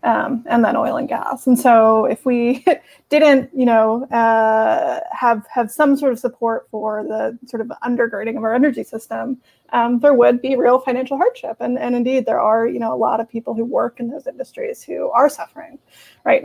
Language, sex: English, female